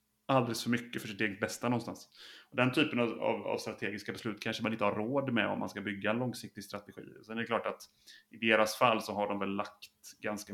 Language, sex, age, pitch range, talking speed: Swedish, male, 30-49, 105-120 Hz, 230 wpm